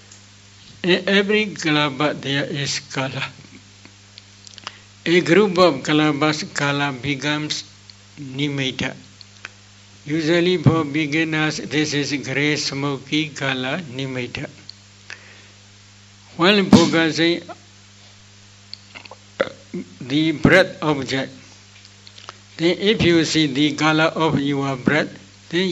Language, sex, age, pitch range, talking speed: Vietnamese, male, 60-79, 100-160 Hz, 85 wpm